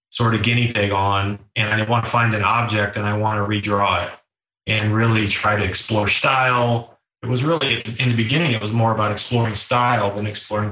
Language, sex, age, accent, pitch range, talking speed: English, male, 30-49, American, 105-120 Hz, 215 wpm